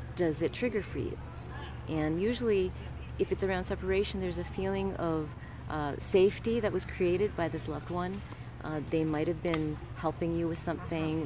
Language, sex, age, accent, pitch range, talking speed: English, female, 40-59, American, 130-180 Hz, 175 wpm